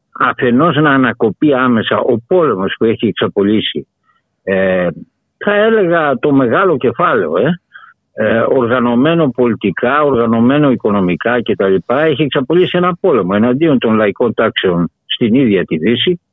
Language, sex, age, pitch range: Greek, male, 60-79, 115-160 Hz